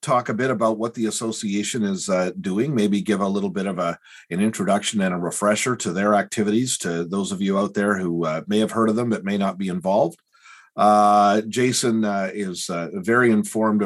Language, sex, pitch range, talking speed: English, male, 100-115 Hz, 215 wpm